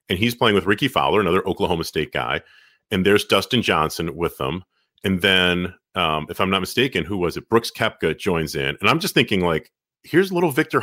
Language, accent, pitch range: English, American, 85-115 Hz